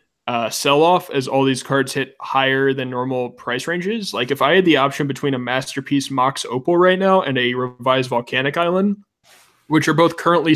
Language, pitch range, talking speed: English, 130-160 Hz, 200 wpm